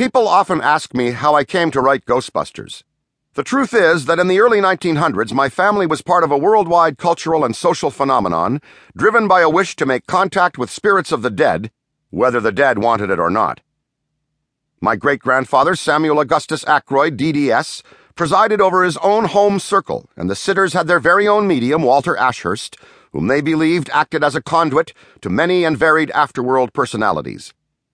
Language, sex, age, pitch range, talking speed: English, male, 50-69, 145-185 Hz, 180 wpm